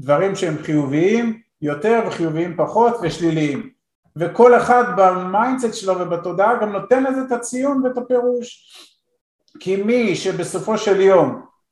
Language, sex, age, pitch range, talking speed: Hebrew, male, 50-69, 170-240 Hz, 125 wpm